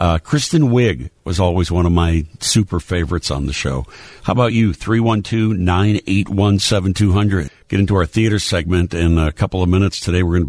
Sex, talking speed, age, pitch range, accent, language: male, 175 wpm, 60-79, 80-100 Hz, American, English